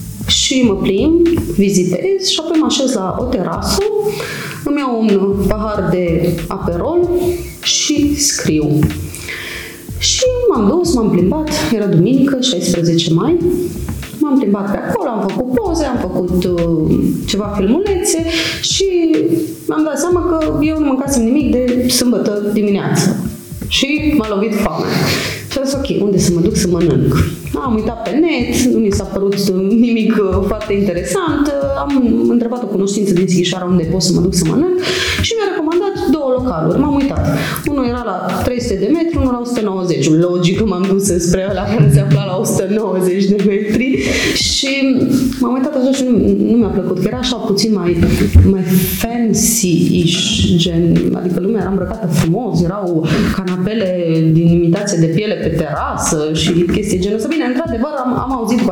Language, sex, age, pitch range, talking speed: Romanian, female, 30-49, 185-275 Hz, 155 wpm